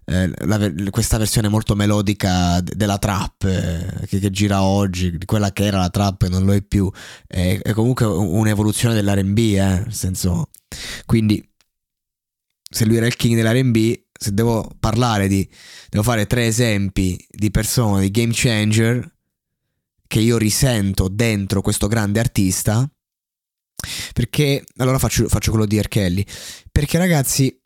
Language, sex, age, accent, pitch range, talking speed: Italian, male, 20-39, native, 100-130 Hz, 145 wpm